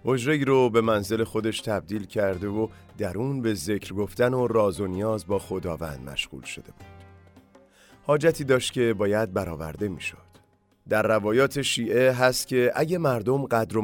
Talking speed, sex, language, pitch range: 160 wpm, male, English, 100-130 Hz